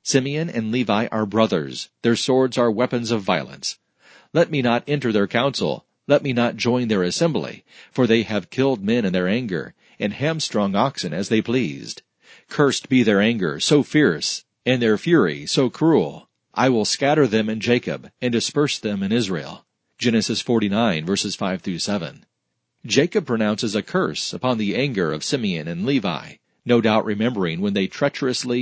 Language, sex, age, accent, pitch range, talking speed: English, male, 40-59, American, 105-130 Hz, 170 wpm